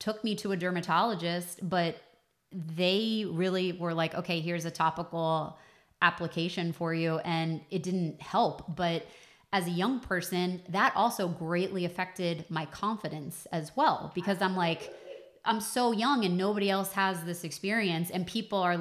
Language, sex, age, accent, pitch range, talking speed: English, female, 20-39, American, 165-210 Hz, 155 wpm